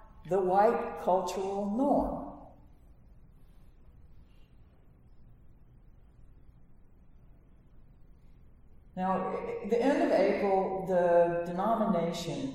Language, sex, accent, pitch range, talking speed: English, female, American, 115-180 Hz, 55 wpm